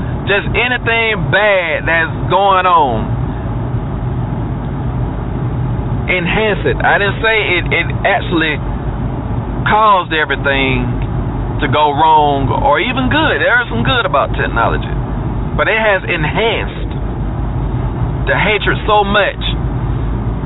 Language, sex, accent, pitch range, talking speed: English, male, American, 120-150 Hz, 105 wpm